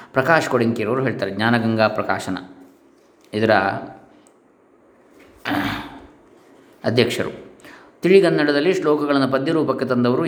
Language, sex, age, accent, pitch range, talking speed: Kannada, male, 20-39, native, 110-130 Hz, 65 wpm